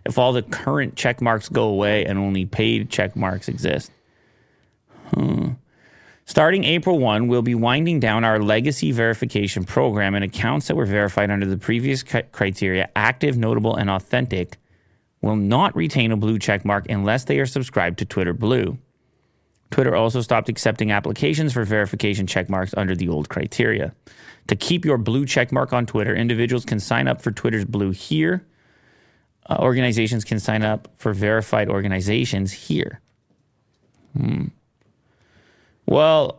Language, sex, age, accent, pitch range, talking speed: English, male, 30-49, American, 105-125 Hz, 150 wpm